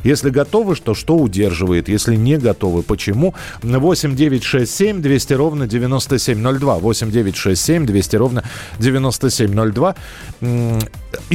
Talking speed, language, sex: 90 wpm, Russian, male